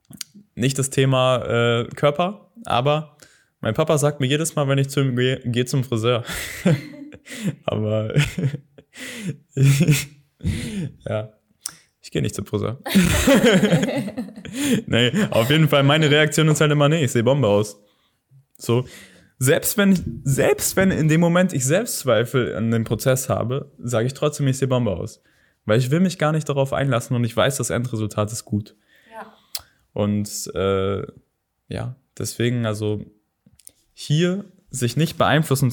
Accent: German